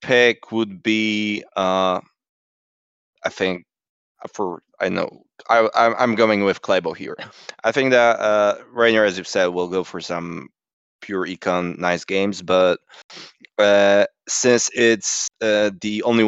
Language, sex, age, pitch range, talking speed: English, male, 20-39, 95-120 Hz, 140 wpm